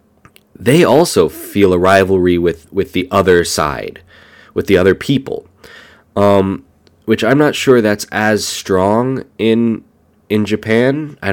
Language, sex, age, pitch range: Japanese, male, 20-39, 85-105 Hz